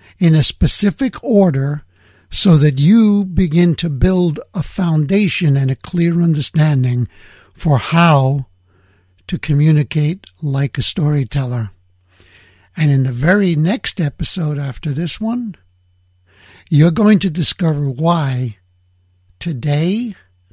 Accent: American